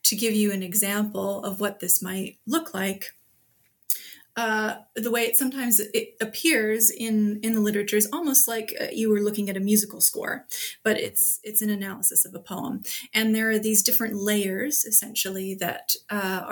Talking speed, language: 180 wpm, English